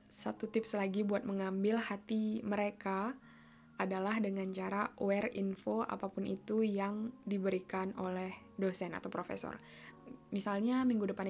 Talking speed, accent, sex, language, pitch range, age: 120 wpm, native, female, Indonesian, 190-220 Hz, 10-29